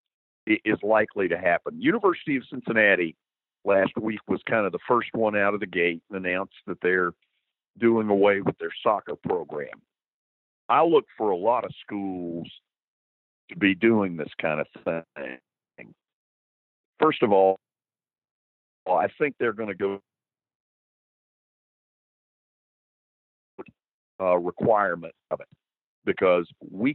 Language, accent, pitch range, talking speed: English, American, 90-125 Hz, 130 wpm